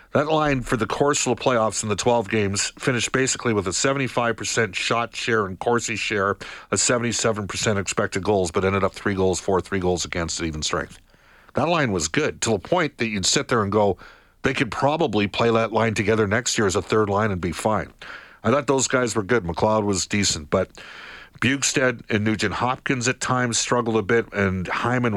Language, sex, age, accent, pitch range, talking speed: English, male, 50-69, American, 95-120 Hz, 205 wpm